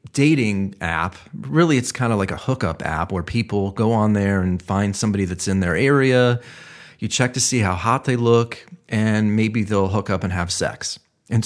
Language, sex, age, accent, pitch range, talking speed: English, male, 30-49, American, 105-145 Hz, 205 wpm